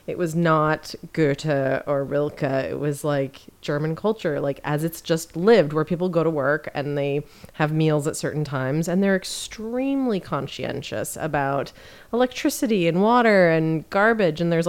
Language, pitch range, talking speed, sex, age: English, 160-230 Hz, 165 wpm, female, 30-49